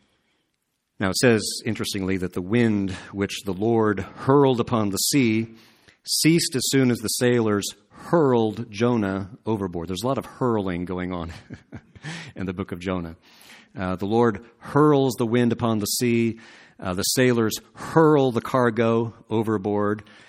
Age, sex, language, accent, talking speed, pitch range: 50-69, male, English, American, 150 wpm, 100-120 Hz